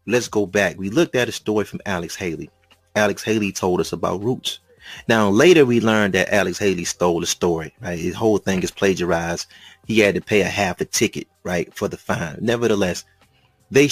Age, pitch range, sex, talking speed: 30-49, 95-135 Hz, male, 205 wpm